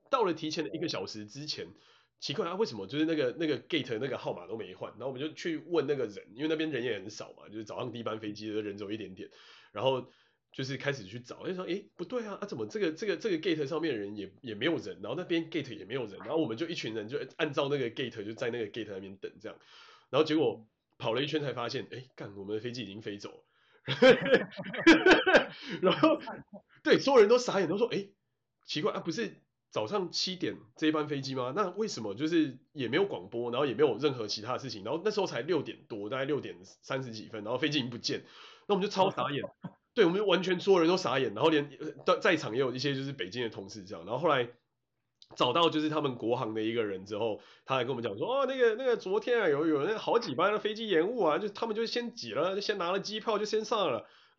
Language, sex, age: Chinese, male, 30-49